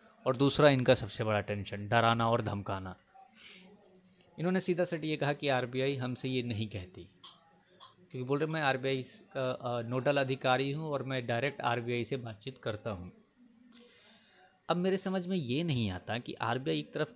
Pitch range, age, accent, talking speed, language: 120-160 Hz, 20-39, native, 175 wpm, Hindi